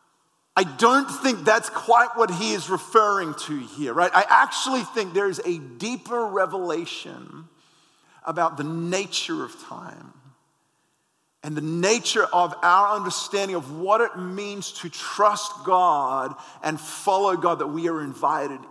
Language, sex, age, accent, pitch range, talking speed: English, male, 40-59, American, 150-205 Hz, 145 wpm